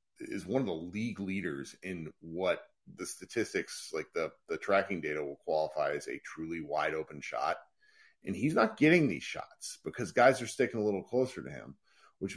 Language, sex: English, male